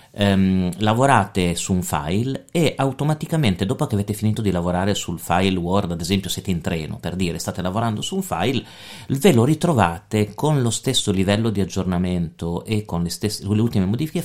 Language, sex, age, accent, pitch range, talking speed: Italian, male, 40-59, native, 95-130 Hz, 185 wpm